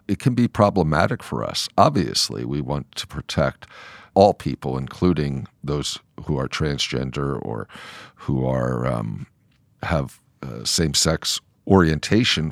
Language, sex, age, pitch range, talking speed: English, male, 50-69, 70-90 Hz, 125 wpm